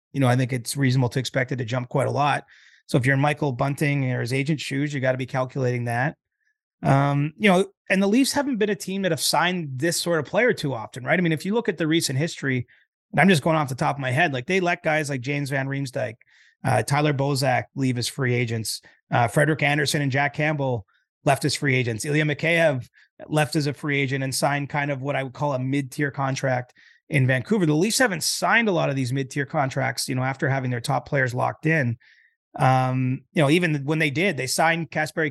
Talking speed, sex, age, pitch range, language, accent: 240 wpm, male, 30-49, 130-160 Hz, English, American